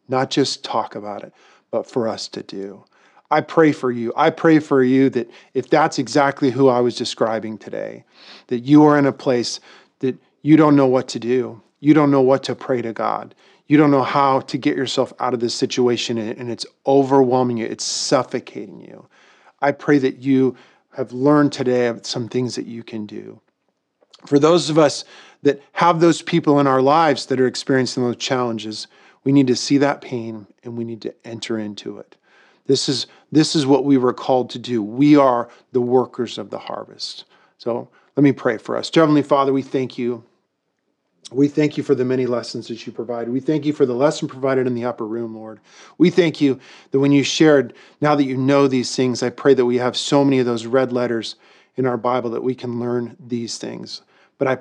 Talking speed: 215 wpm